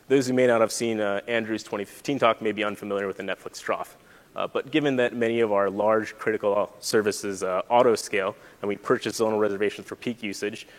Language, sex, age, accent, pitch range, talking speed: English, male, 30-49, American, 100-120 Hz, 205 wpm